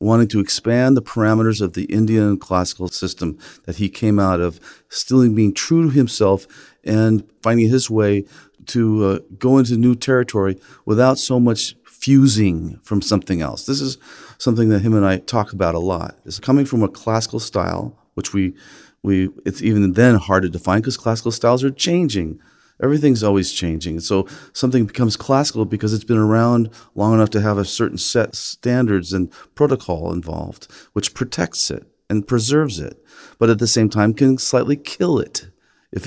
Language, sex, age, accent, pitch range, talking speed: English, male, 40-59, American, 100-125 Hz, 175 wpm